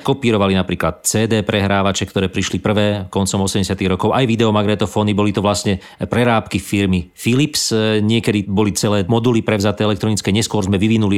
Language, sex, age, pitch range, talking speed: Slovak, male, 40-59, 95-110 Hz, 145 wpm